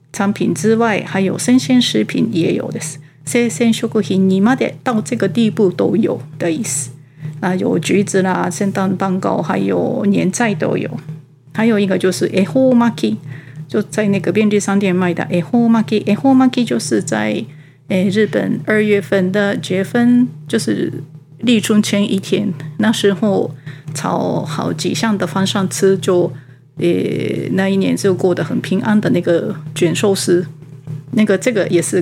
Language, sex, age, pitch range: Japanese, female, 40-59, 170-220 Hz